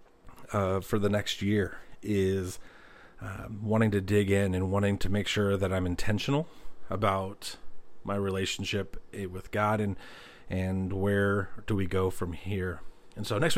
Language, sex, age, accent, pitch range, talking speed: English, male, 30-49, American, 95-115 Hz, 155 wpm